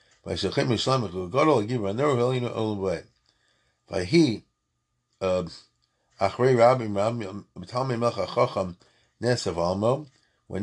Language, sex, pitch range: English, male, 110-145 Hz